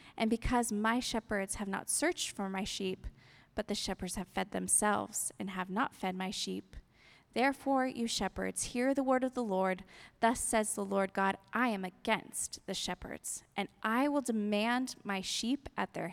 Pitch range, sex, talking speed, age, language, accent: 195-245 Hz, female, 180 wpm, 20-39, English, American